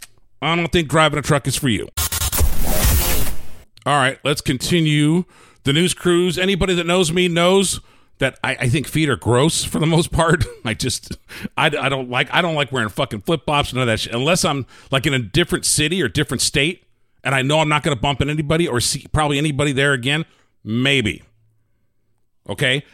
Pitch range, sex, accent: 120-175 Hz, male, American